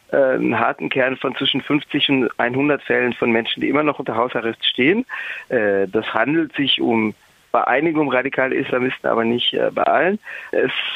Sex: male